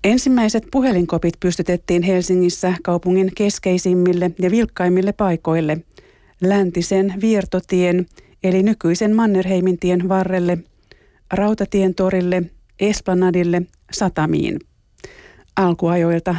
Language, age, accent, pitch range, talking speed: Finnish, 30-49, native, 175-200 Hz, 75 wpm